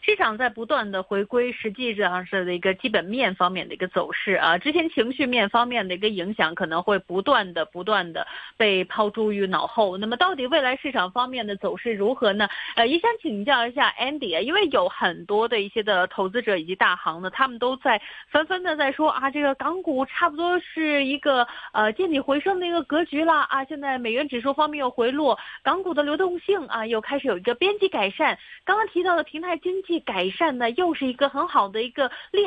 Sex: female